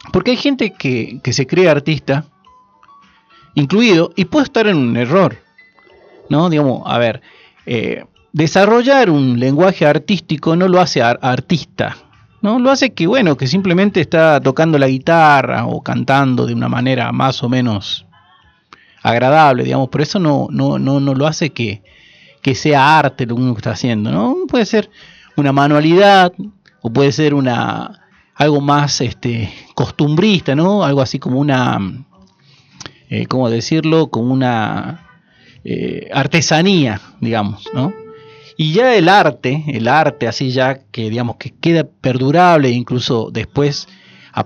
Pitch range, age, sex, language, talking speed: 125-170 Hz, 40-59, male, Spanish, 150 wpm